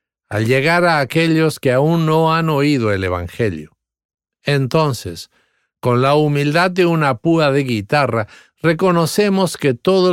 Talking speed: 135 wpm